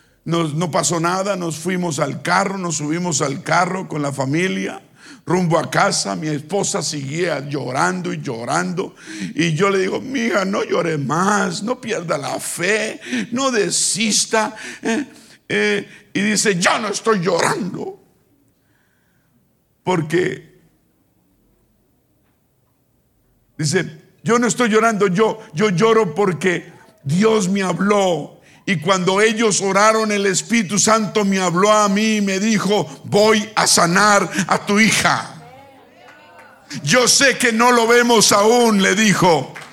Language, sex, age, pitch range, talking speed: Spanish, male, 50-69, 180-225 Hz, 135 wpm